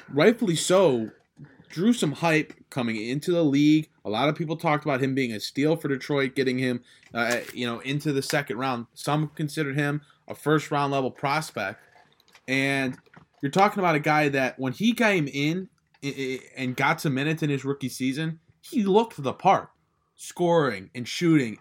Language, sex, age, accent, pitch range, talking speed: English, male, 20-39, American, 135-160 Hz, 180 wpm